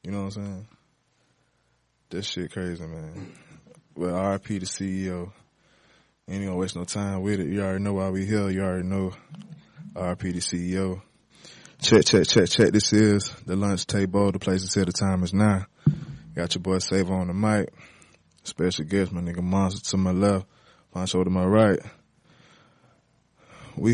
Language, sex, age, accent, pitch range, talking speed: English, male, 20-39, American, 90-100 Hz, 175 wpm